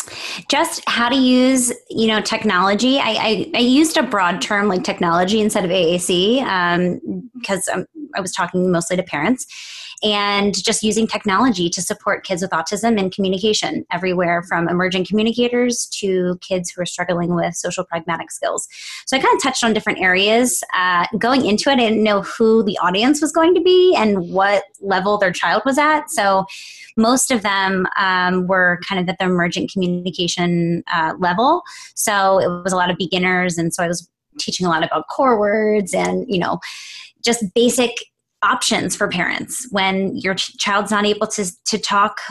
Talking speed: 180 wpm